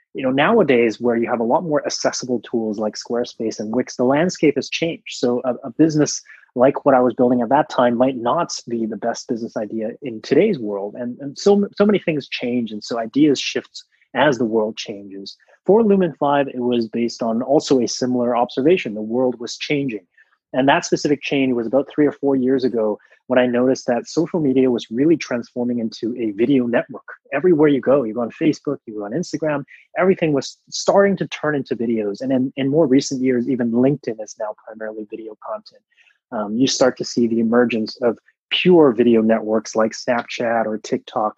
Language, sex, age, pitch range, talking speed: English, male, 20-39, 120-150 Hz, 205 wpm